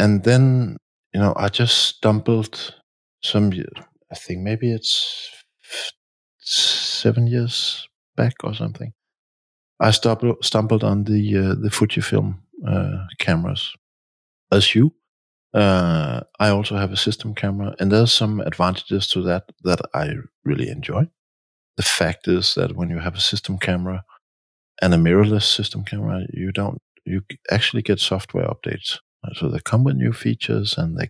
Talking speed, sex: 145 wpm, male